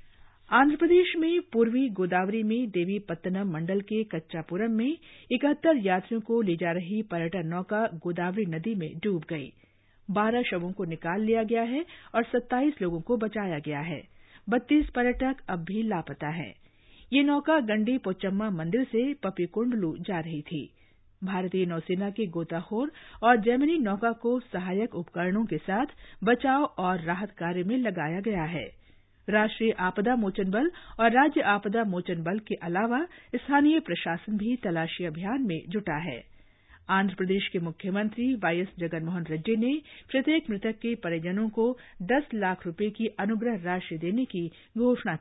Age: 50-69